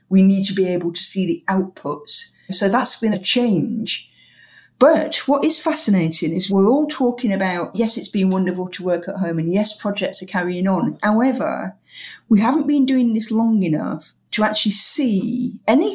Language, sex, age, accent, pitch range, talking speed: English, female, 50-69, British, 180-235 Hz, 185 wpm